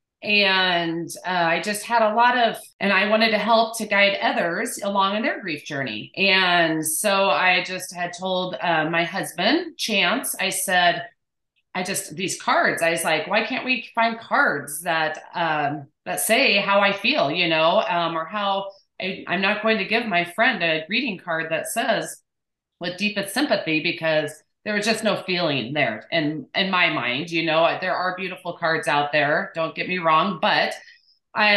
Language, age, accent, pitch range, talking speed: English, 30-49, American, 165-210 Hz, 185 wpm